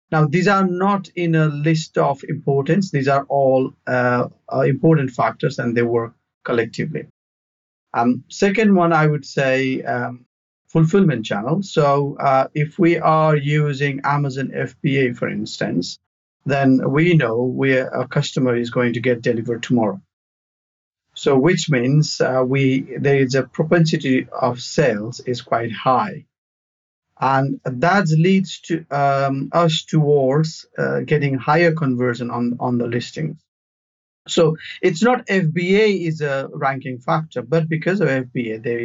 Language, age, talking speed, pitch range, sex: English, 50-69, 140 wpm, 125-160 Hz, male